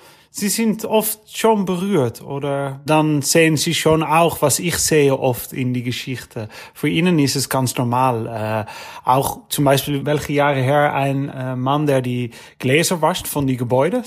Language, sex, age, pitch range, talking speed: German, male, 30-49, 130-155 Hz, 170 wpm